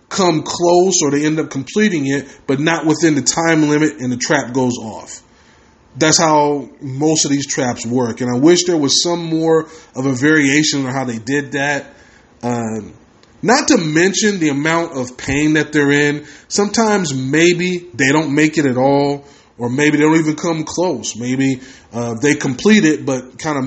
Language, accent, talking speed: English, American, 190 wpm